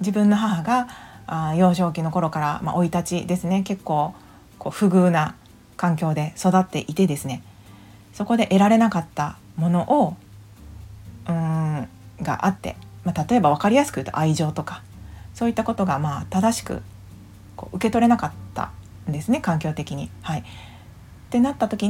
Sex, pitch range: female, 150-220 Hz